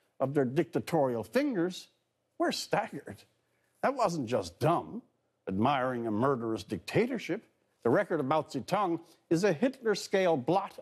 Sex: male